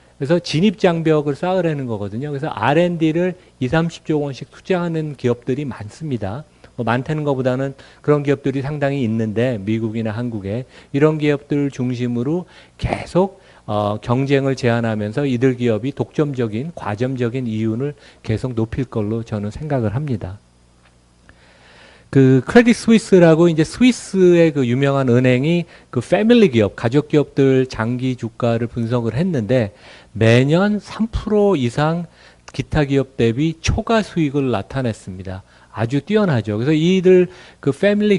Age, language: 40-59, Korean